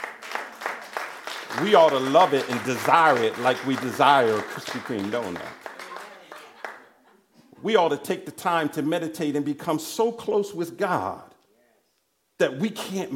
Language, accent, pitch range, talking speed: English, American, 170-235 Hz, 145 wpm